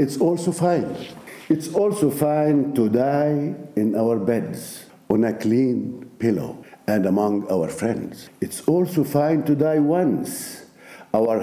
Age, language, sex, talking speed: 60-79, English, male, 135 wpm